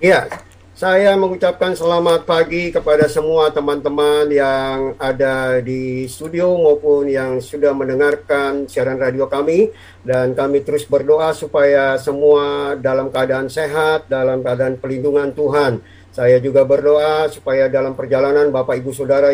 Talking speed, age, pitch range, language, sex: 125 wpm, 50-69, 135-170 Hz, Indonesian, male